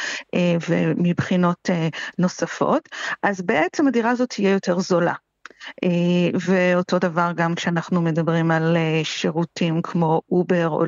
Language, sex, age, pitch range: Hebrew, female, 50-69, 170-230 Hz